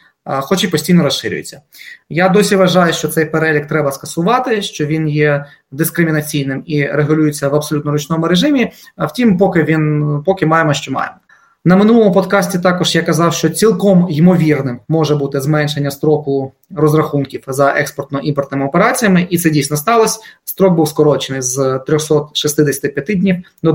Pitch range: 145-185 Hz